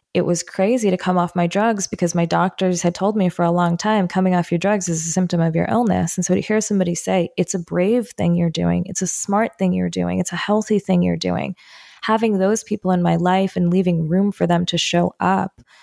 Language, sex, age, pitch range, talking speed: English, female, 20-39, 175-195 Hz, 250 wpm